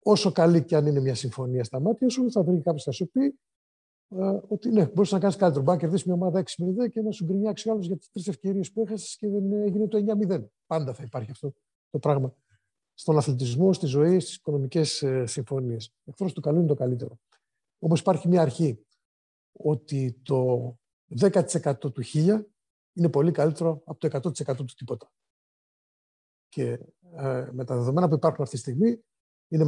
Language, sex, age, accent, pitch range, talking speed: Greek, male, 50-69, native, 130-180 Hz, 190 wpm